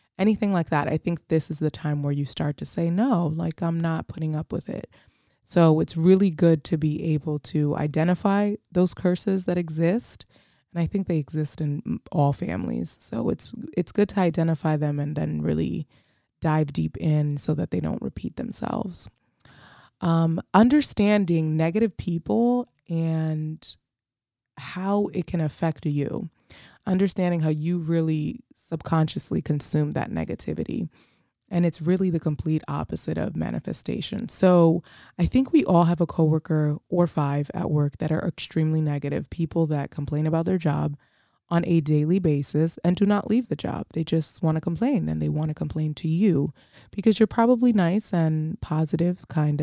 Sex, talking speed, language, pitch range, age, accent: female, 170 wpm, English, 155-185 Hz, 20-39, American